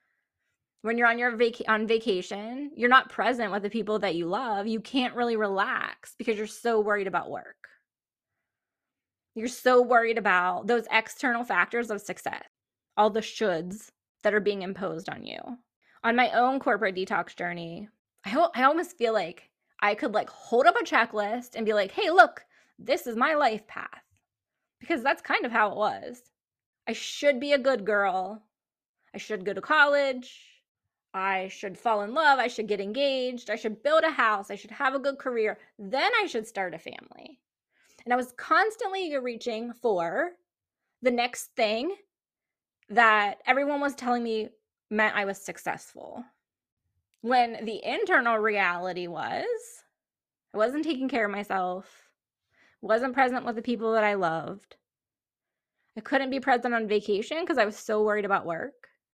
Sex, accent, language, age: female, American, English, 20-39